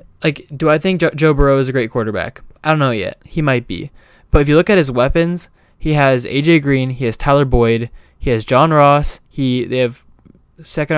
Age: 10-29